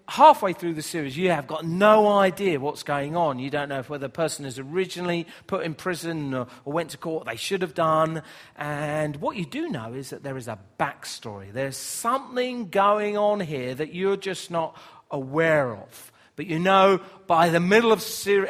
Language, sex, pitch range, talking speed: English, male, 145-200 Hz, 205 wpm